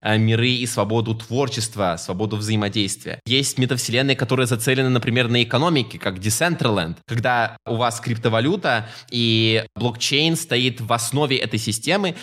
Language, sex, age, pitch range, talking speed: Russian, male, 20-39, 115-145 Hz, 130 wpm